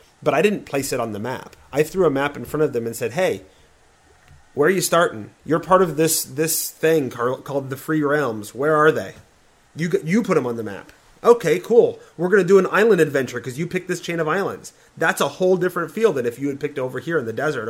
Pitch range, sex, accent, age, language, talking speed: 115-155 Hz, male, American, 30-49, English, 250 wpm